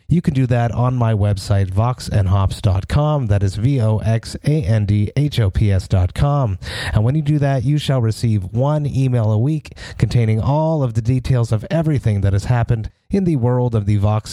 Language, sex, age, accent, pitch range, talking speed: English, male, 30-49, American, 105-130 Hz, 170 wpm